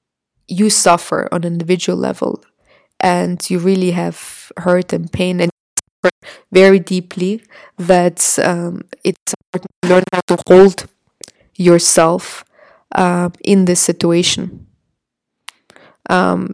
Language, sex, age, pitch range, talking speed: English, female, 20-39, 175-190 Hz, 115 wpm